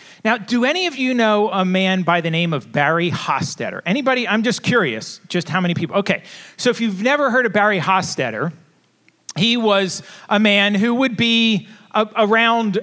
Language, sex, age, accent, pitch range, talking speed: English, male, 40-59, American, 170-215 Hz, 180 wpm